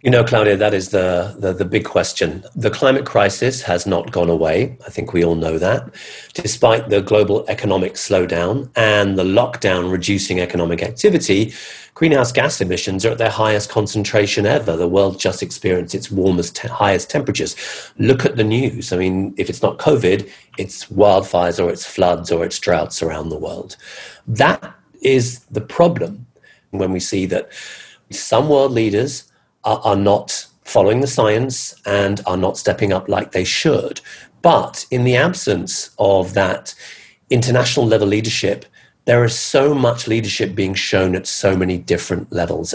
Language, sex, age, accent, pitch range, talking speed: English, male, 40-59, British, 95-115 Hz, 165 wpm